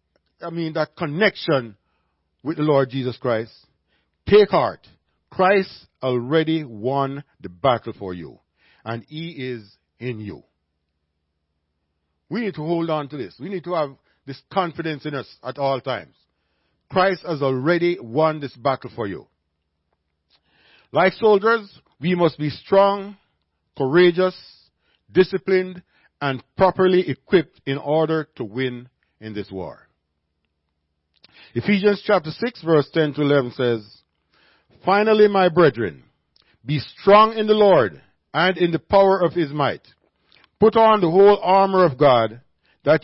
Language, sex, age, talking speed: English, male, 50-69, 135 wpm